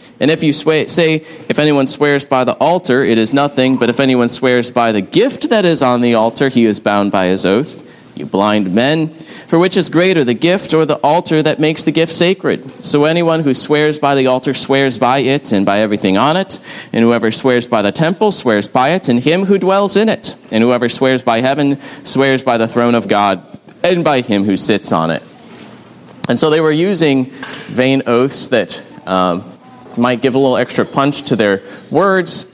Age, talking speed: 30-49, 210 wpm